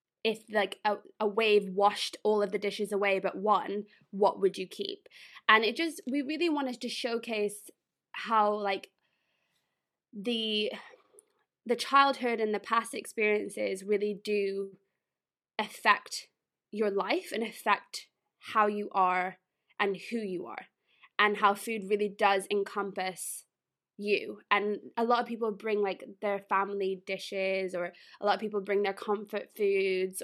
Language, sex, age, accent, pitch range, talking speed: English, female, 20-39, British, 195-220 Hz, 145 wpm